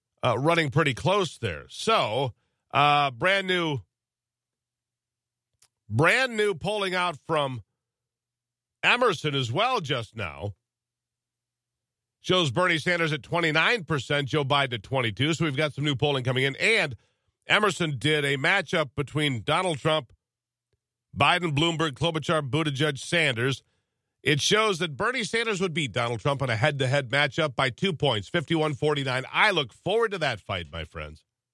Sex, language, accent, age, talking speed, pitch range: male, English, American, 50-69, 145 wpm, 120-160 Hz